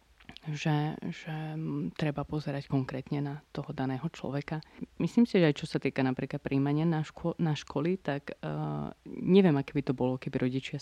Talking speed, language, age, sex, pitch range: 170 wpm, Slovak, 30-49, female, 140-165 Hz